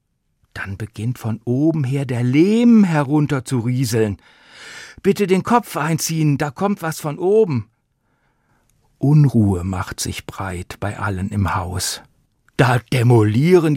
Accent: German